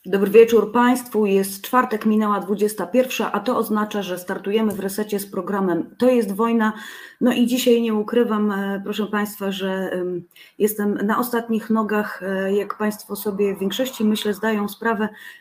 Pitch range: 175-210 Hz